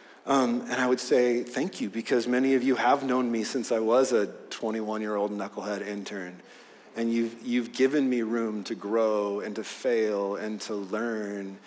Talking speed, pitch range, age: 190 wpm, 105-130 Hz, 30-49